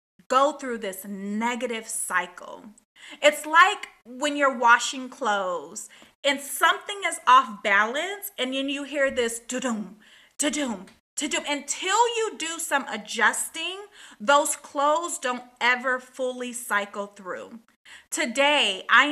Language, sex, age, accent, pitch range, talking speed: English, female, 30-49, American, 230-320 Hz, 120 wpm